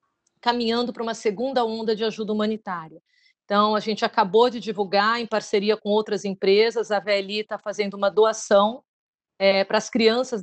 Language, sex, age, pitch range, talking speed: Portuguese, female, 40-59, 200-230 Hz, 165 wpm